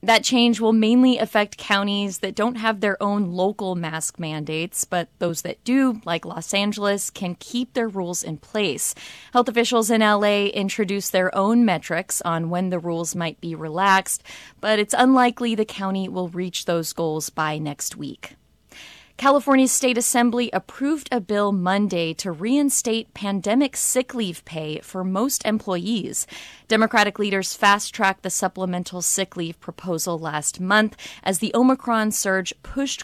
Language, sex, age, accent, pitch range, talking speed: English, female, 20-39, American, 175-225 Hz, 155 wpm